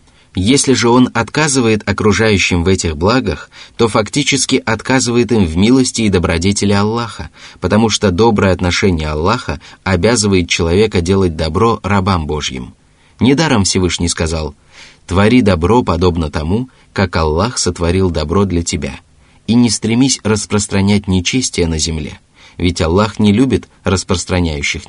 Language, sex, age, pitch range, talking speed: Russian, male, 20-39, 85-110 Hz, 130 wpm